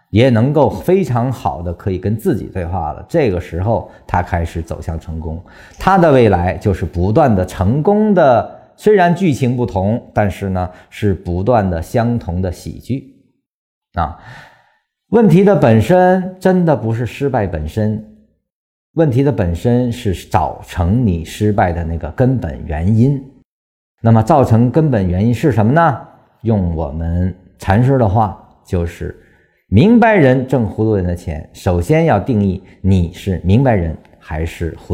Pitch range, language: 85-120 Hz, Chinese